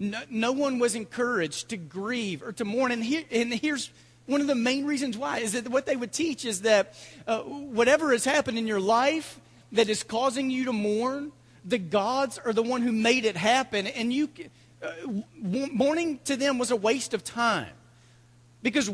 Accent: American